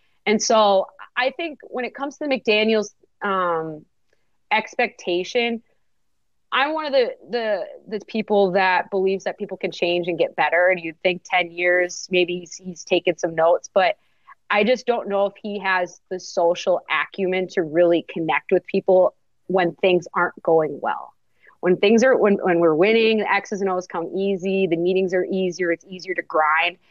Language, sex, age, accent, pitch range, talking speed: English, female, 30-49, American, 170-195 Hz, 180 wpm